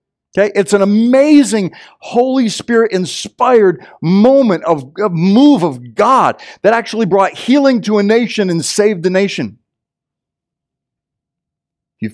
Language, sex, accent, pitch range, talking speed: English, male, American, 140-215 Hz, 115 wpm